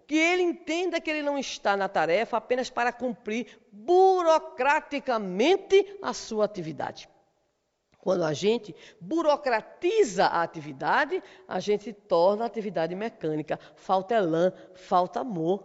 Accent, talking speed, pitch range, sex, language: Brazilian, 125 wpm, 205-315 Hz, female, Portuguese